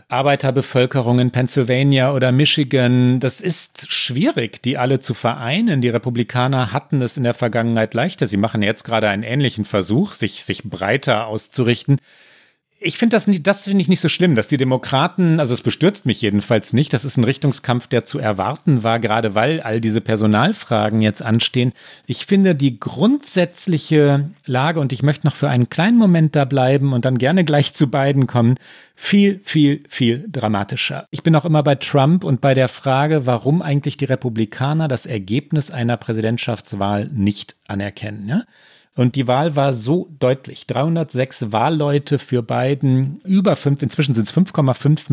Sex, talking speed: male, 170 wpm